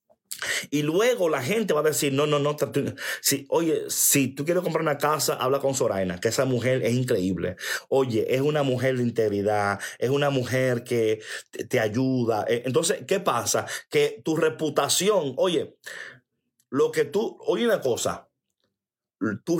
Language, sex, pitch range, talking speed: Spanish, male, 130-175 Hz, 155 wpm